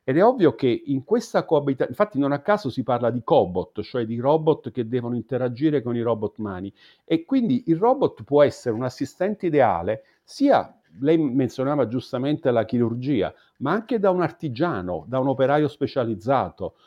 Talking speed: 175 wpm